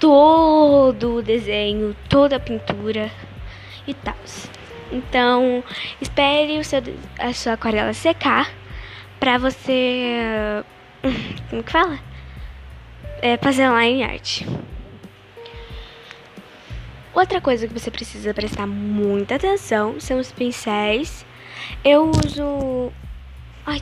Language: Portuguese